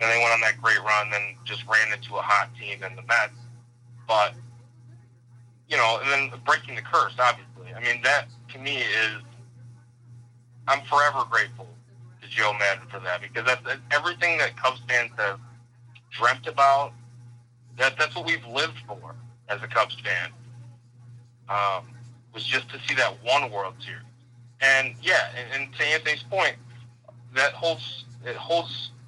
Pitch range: 120-130 Hz